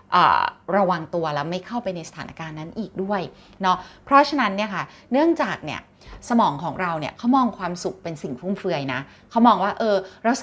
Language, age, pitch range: Thai, 30-49, 175-225 Hz